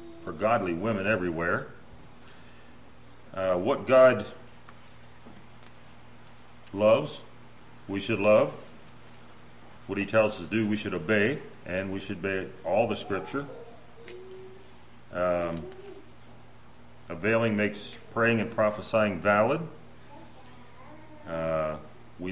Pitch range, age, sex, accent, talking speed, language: 90-110 Hz, 40-59, male, American, 95 wpm, English